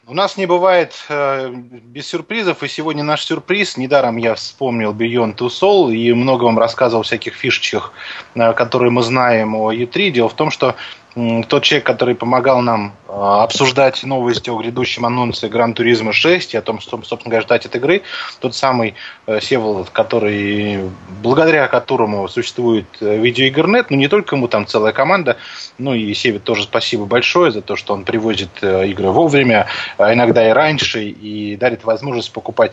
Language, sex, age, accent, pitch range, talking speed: Russian, male, 20-39, native, 115-140 Hz, 175 wpm